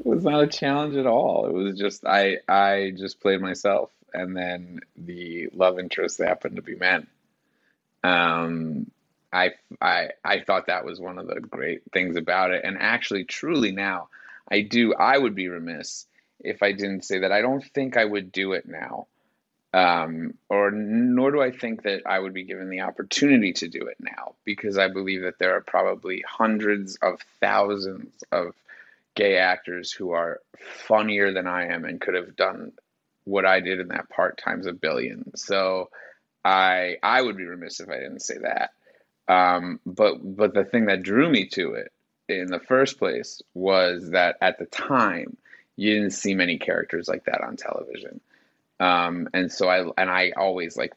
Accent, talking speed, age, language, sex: American, 185 wpm, 30-49, English, male